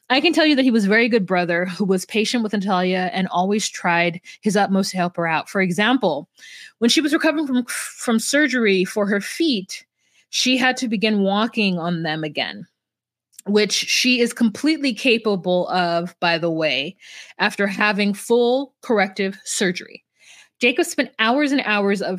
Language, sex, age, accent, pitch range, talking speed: English, female, 20-39, American, 185-235 Hz, 175 wpm